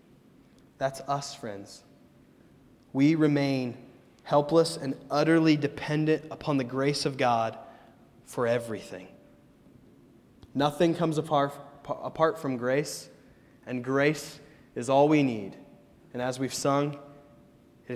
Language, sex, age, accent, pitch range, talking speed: English, male, 20-39, American, 130-160 Hz, 110 wpm